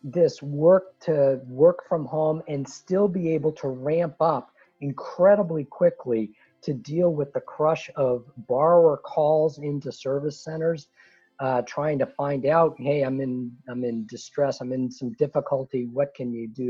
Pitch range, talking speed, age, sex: 130-160 Hz, 160 wpm, 50-69, male